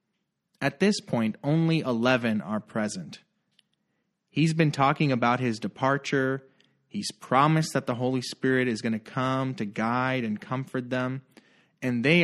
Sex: male